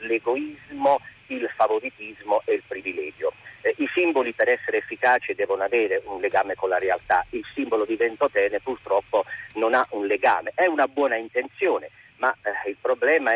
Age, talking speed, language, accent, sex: 50-69, 160 wpm, Italian, native, male